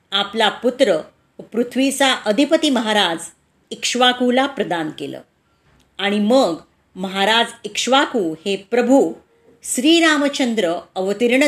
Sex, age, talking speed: female, 40-59, 85 wpm